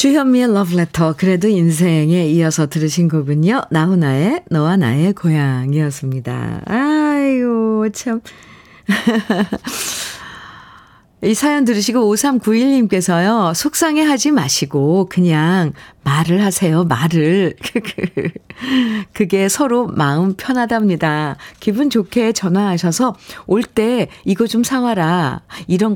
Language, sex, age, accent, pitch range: Korean, female, 50-69, native, 170-240 Hz